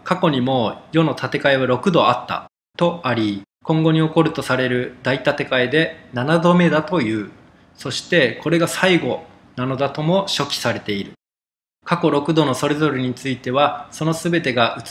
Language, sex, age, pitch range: Japanese, male, 20-39, 125-155 Hz